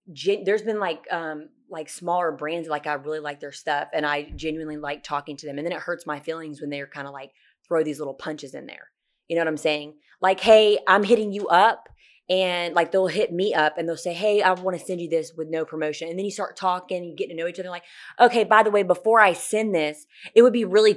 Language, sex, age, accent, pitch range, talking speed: English, female, 20-39, American, 155-190 Hz, 260 wpm